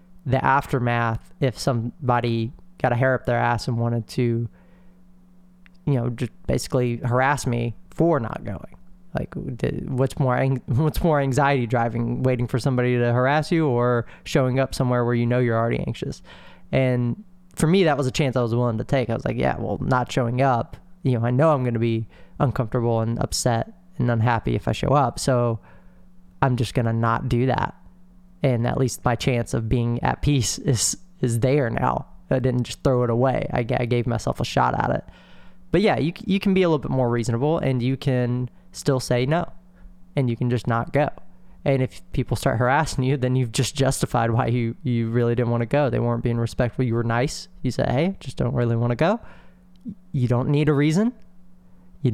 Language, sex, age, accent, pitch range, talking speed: English, male, 20-39, American, 120-145 Hz, 205 wpm